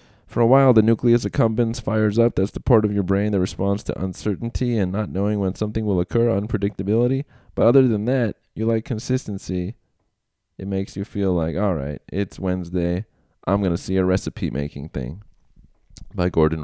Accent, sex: American, male